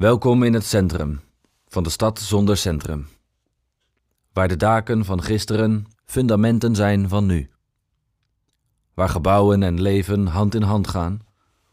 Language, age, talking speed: Dutch, 40-59, 135 wpm